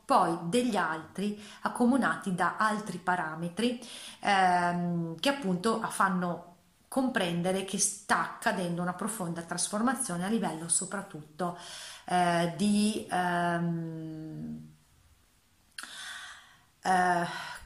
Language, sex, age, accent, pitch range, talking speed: Italian, female, 30-49, native, 170-200 Hz, 85 wpm